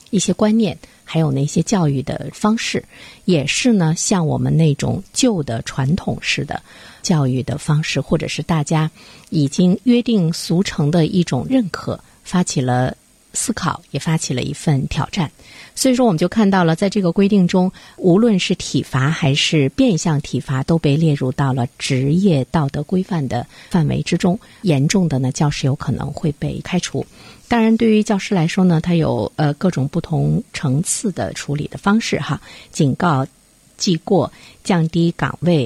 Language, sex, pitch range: Chinese, female, 145-190 Hz